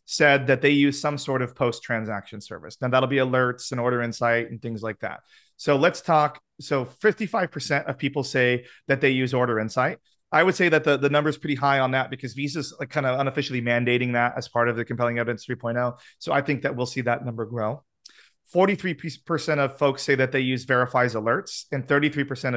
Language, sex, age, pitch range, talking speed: English, male, 30-49, 120-145 Hz, 205 wpm